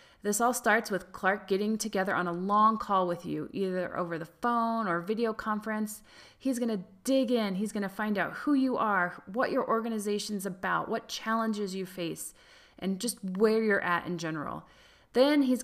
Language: English